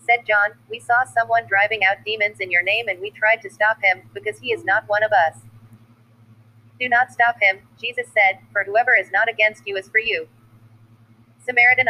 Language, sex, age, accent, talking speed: English, female, 30-49, American, 200 wpm